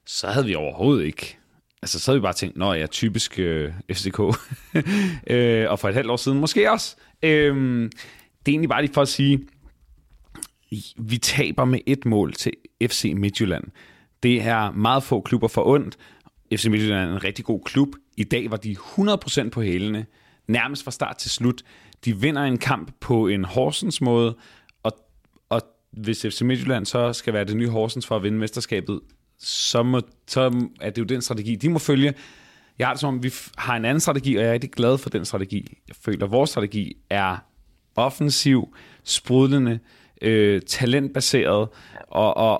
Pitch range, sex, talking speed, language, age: 105-135 Hz, male, 185 wpm, Danish, 30-49